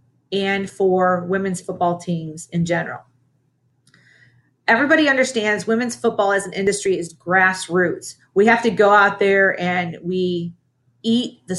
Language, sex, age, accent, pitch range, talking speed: English, female, 40-59, American, 135-215 Hz, 135 wpm